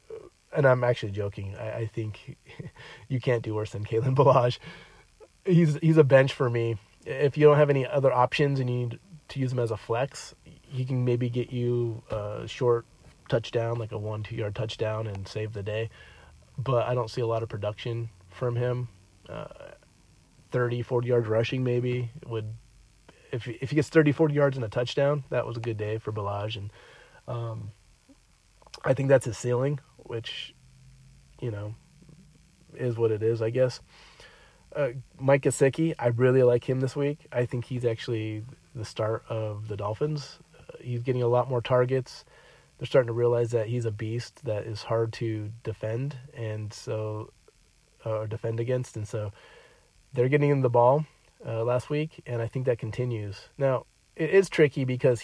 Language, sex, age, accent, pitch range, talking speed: English, male, 30-49, American, 110-135 Hz, 180 wpm